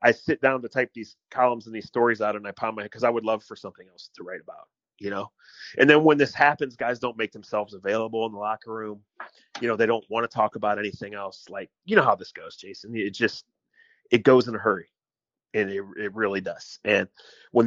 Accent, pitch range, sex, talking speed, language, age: American, 115-160 Hz, male, 250 wpm, English, 30-49